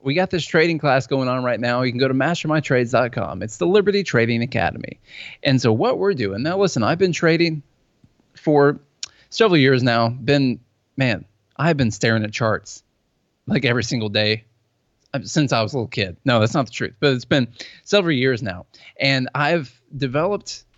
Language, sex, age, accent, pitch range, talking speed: English, male, 30-49, American, 115-145 Hz, 185 wpm